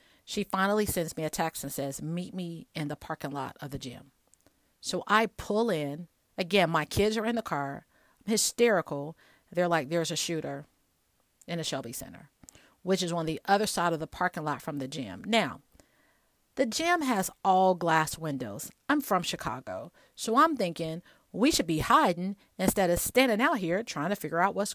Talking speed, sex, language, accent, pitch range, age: 190 wpm, female, English, American, 150-190 Hz, 40-59